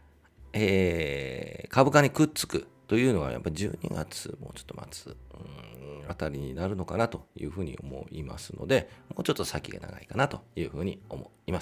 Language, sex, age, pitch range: Japanese, male, 40-59, 80-115 Hz